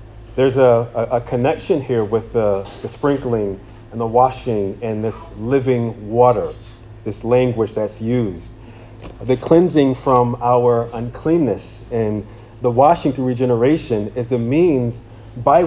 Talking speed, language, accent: 130 wpm, English, American